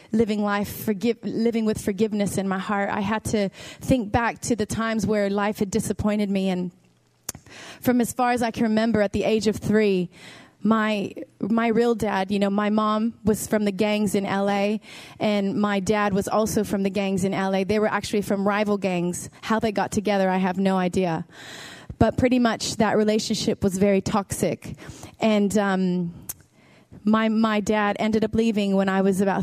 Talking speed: 190 wpm